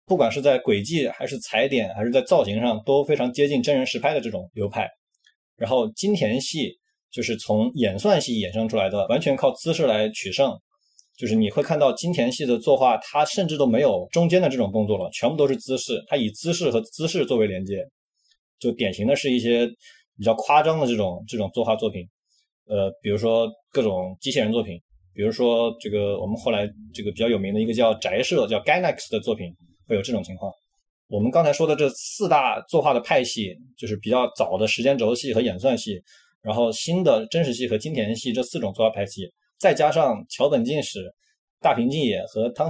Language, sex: Chinese, male